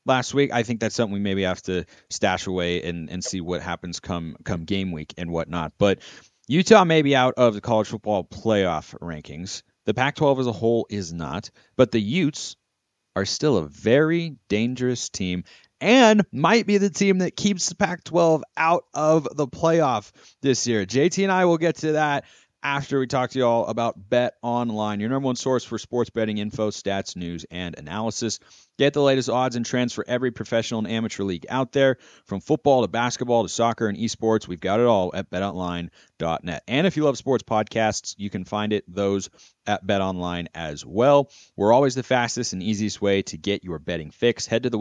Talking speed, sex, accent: 200 wpm, male, American